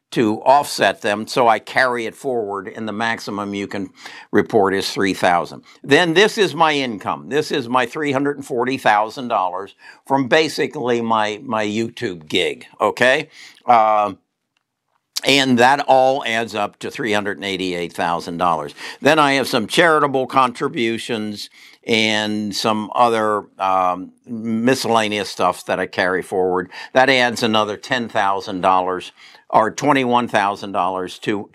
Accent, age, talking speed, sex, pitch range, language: American, 60-79, 140 wpm, male, 100-125 Hz, English